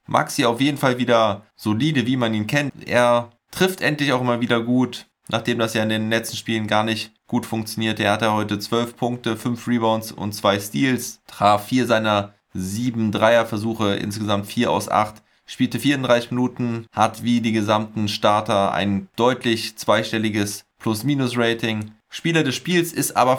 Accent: German